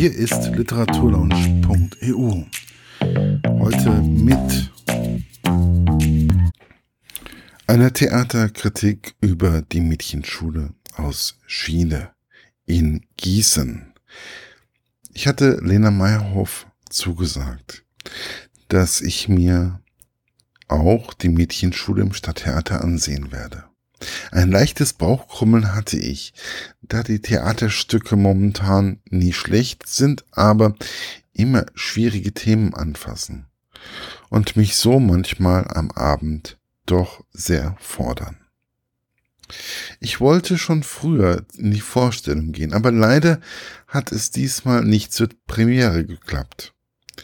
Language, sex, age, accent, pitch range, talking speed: German, male, 50-69, German, 80-115 Hz, 90 wpm